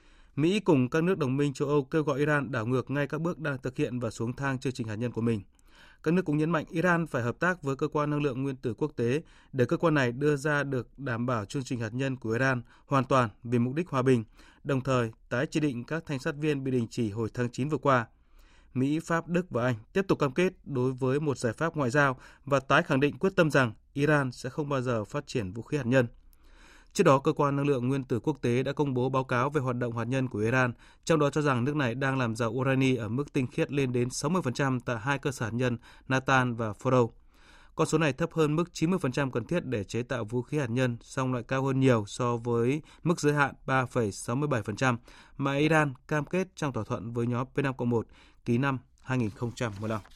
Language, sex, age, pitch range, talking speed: Vietnamese, male, 20-39, 120-150 Hz, 245 wpm